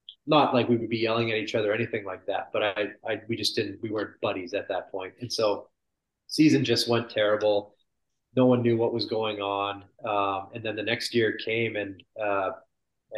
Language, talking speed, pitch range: English, 215 wpm, 110-125 Hz